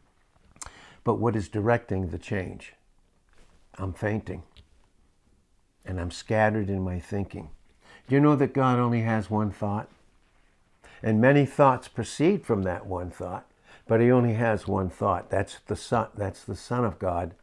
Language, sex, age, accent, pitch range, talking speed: English, male, 60-79, American, 100-145 Hz, 150 wpm